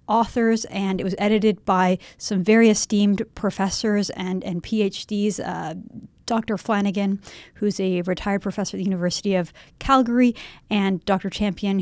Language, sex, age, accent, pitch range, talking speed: English, female, 30-49, American, 190-220 Hz, 140 wpm